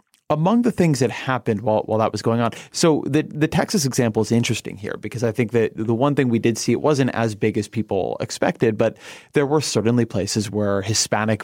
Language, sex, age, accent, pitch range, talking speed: English, male, 30-49, American, 105-125 Hz, 230 wpm